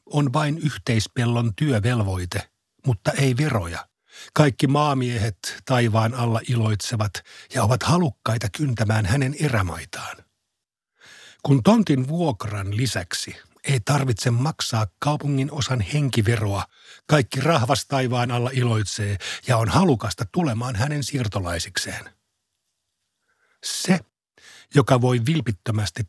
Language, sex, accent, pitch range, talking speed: Finnish, male, native, 110-140 Hz, 100 wpm